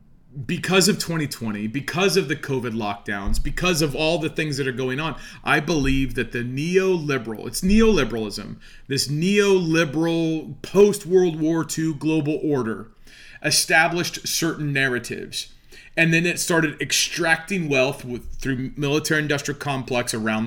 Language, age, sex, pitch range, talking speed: English, 30-49, male, 135-170 Hz, 130 wpm